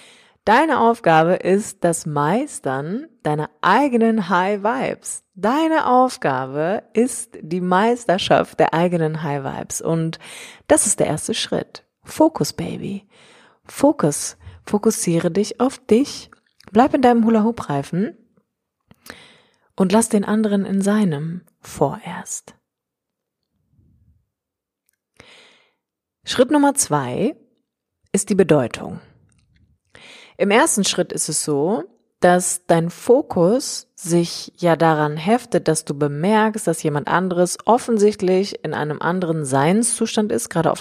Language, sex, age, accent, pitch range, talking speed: German, female, 30-49, German, 155-220 Hz, 110 wpm